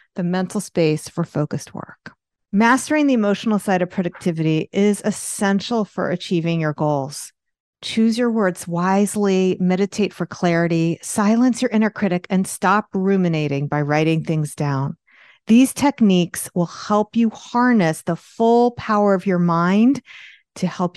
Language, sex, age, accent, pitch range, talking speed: English, female, 40-59, American, 170-210 Hz, 145 wpm